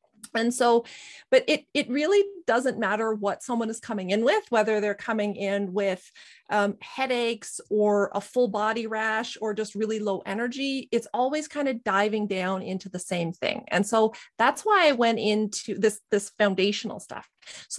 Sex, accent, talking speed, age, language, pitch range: female, American, 180 wpm, 30-49, English, 210-260 Hz